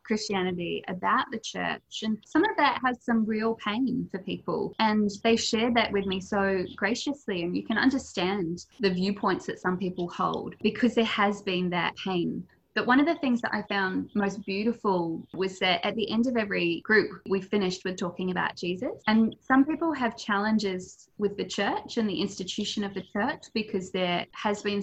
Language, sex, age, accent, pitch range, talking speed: English, female, 20-39, Australian, 185-225 Hz, 195 wpm